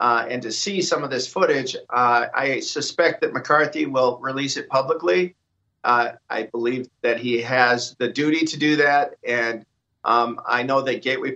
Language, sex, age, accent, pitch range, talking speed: English, male, 50-69, American, 150-190 Hz, 180 wpm